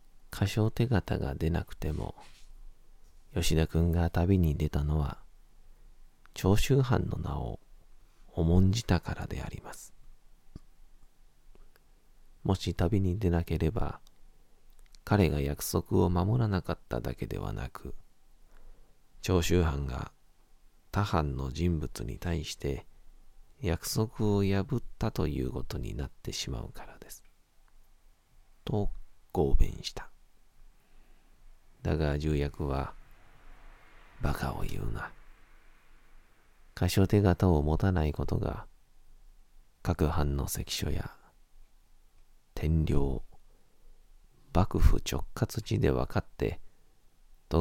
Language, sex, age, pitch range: Japanese, male, 40-59, 75-95 Hz